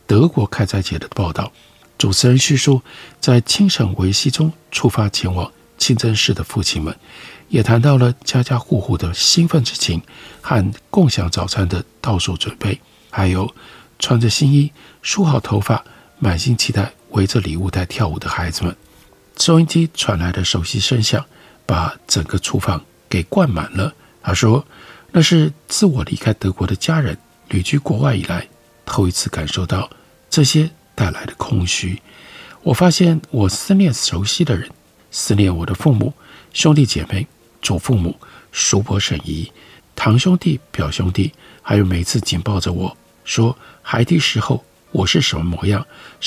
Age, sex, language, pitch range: 60-79, male, Chinese, 95-140 Hz